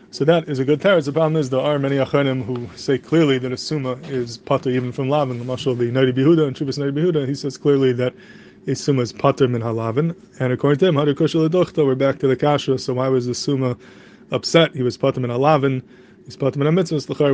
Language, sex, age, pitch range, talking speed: English, male, 20-39, 125-155 Hz, 220 wpm